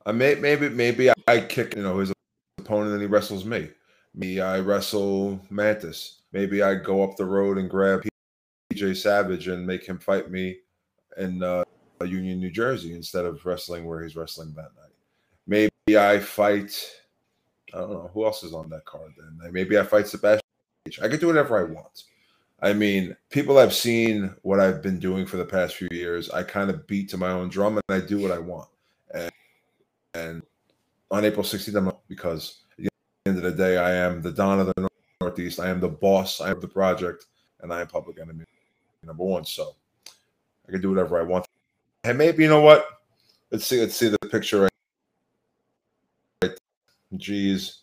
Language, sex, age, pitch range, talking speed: English, male, 20-39, 90-105 Hz, 190 wpm